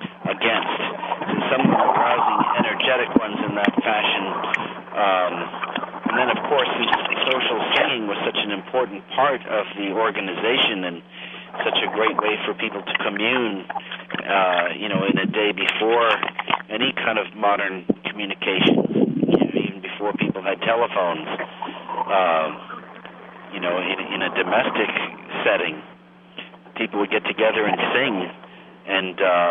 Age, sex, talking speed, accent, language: 50-69, male, 135 wpm, American, English